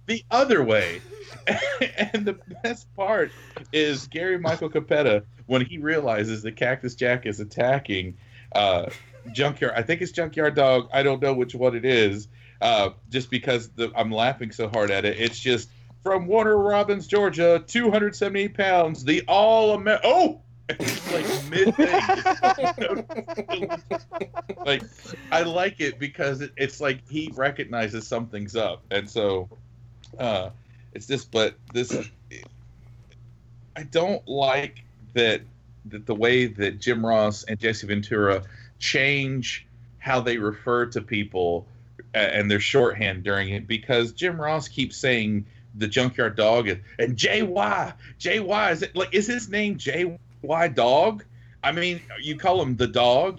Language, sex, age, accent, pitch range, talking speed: English, male, 40-59, American, 115-160 Hz, 145 wpm